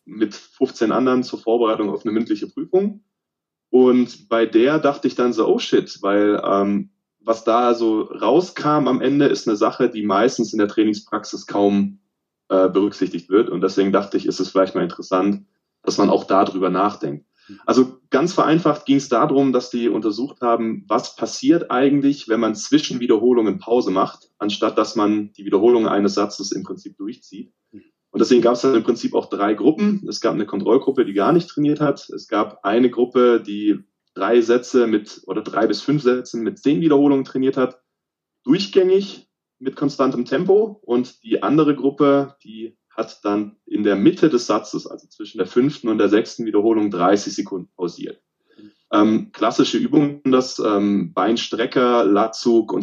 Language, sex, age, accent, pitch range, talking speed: German, male, 20-39, German, 105-145 Hz, 175 wpm